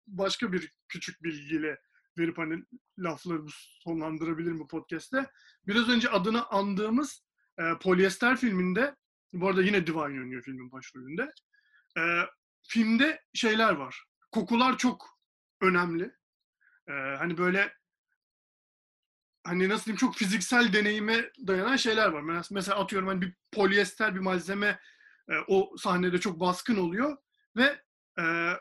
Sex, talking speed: male, 125 wpm